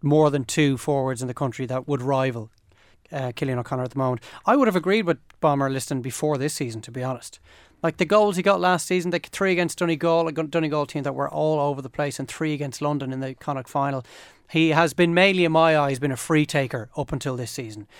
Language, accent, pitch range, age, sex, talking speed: English, Irish, 135-155 Hz, 30-49, male, 240 wpm